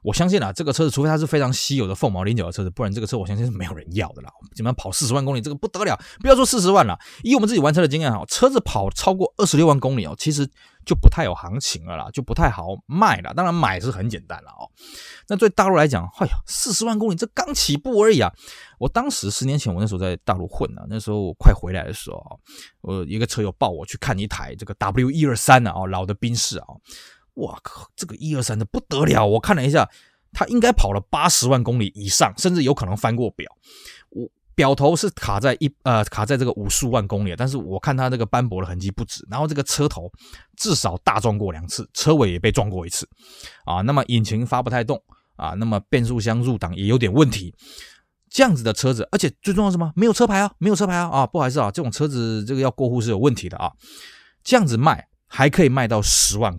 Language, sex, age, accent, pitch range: Chinese, male, 20-39, native, 105-155 Hz